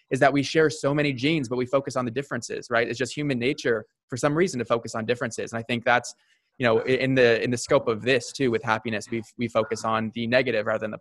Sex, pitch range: male, 115-130 Hz